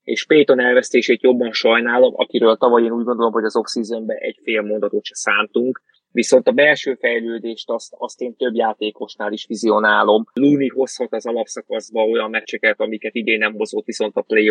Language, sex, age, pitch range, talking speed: Hungarian, male, 20-39, 110-125 Hz, 175 wpm